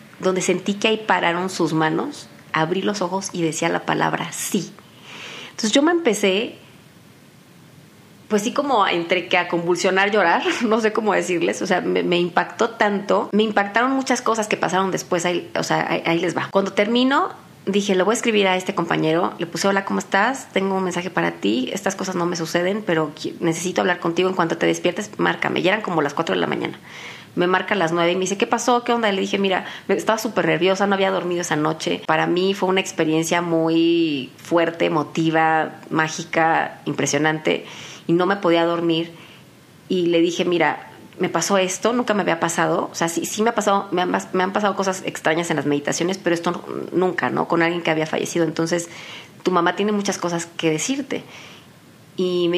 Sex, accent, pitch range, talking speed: female, Mexican, 165-195 Hz, 205 wpm